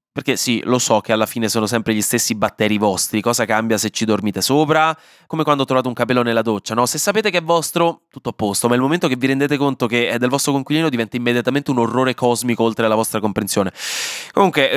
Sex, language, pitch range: male, Italian, 110-155 Hz